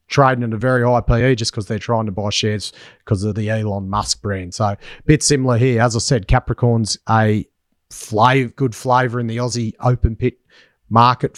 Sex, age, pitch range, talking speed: male, 30-49, 105-130 Hz, 195 wpm